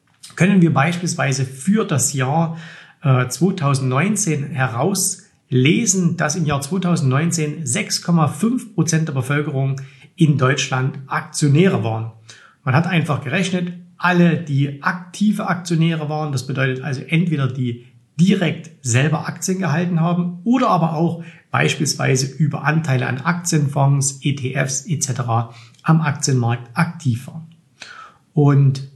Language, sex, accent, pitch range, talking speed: German, male, German, 130-170 Hz, 110 wpm